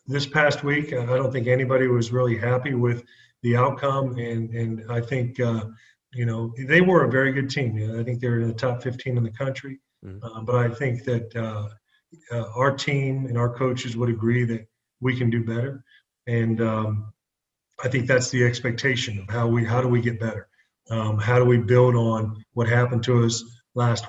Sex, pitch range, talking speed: male, 115-135 Hz, 200 wpm